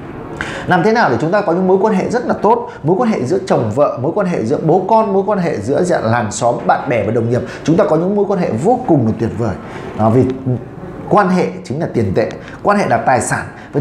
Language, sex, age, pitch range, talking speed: Vietnamese, male, 20-39, 120-185 Hz, 275 wpm